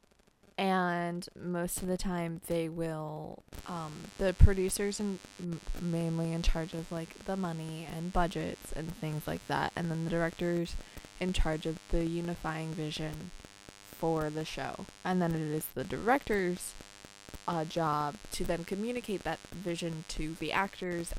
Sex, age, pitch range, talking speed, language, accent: female, 20-39, 150-180 Hz, 150 wpm, English, American